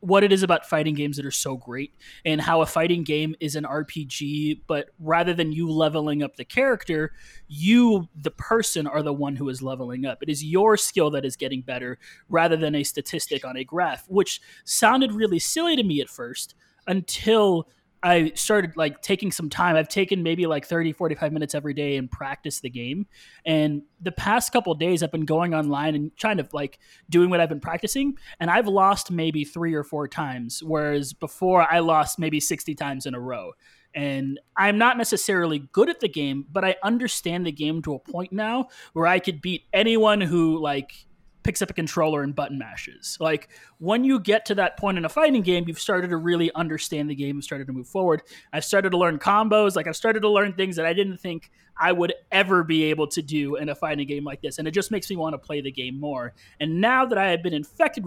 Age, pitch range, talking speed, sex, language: 20-39, 150-195 Hz, 225 wpm, male, English